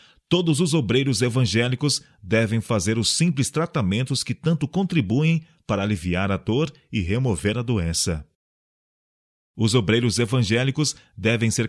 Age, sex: 40-59, male